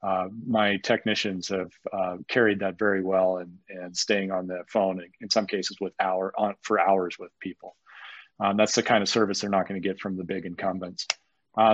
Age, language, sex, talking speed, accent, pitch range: 40-59, English, male, 215 wpm, American, 100-115 Hz